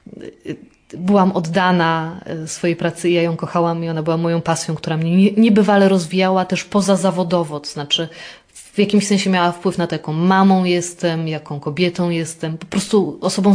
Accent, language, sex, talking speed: Polish, English, female, 165 wpm